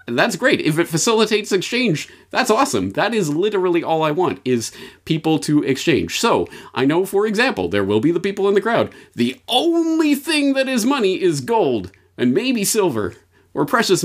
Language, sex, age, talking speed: English, male, 30-49, 190 wpm